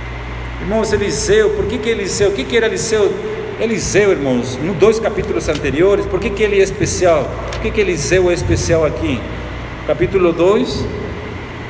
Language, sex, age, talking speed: Portuguese, male, 50-69, 165 wpm